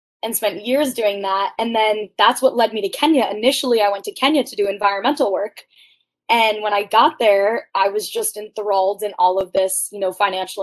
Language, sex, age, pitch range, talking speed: English, female, 20-39, 200-250 Hz, 215 wpm